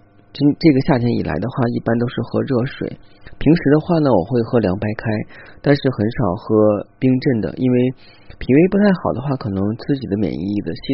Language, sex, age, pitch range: Chinese, male, 30-49, 105-125 Hz